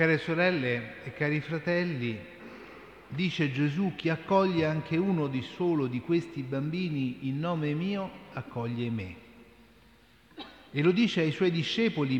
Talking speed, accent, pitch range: 135 wpm, native, 120-165 Hz